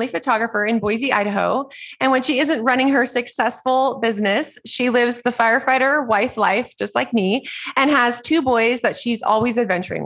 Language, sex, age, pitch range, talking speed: English, female, 20-39, 210-260 Hz, 175 wpm